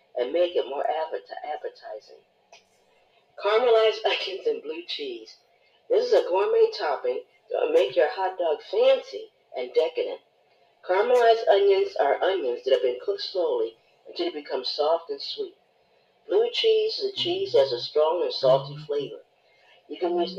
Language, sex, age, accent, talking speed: English, female, 50-69, American, 160 wpm